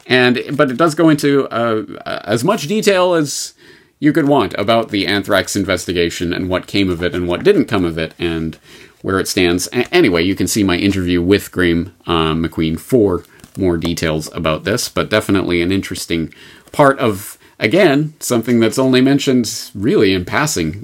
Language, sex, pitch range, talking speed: English, male, 85-120 Hz, 175 wpm